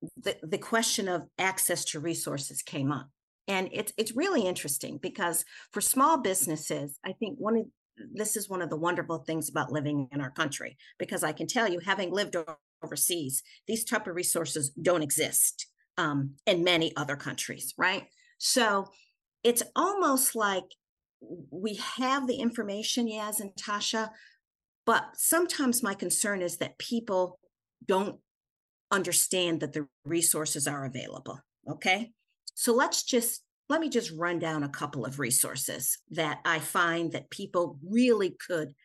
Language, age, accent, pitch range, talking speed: English, 50-69, American, 155-215 Hz, 155 wpm